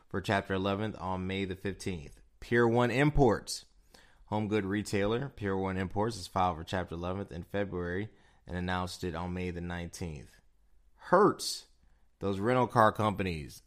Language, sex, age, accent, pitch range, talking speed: English, male, 20-39, American, 80-105 Hz, 155 wpm